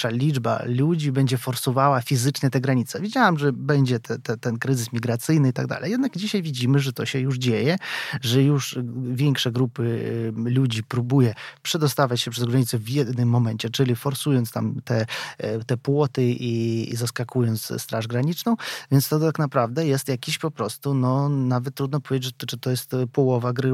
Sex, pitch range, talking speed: male, 125-150 Hz, 170 wpm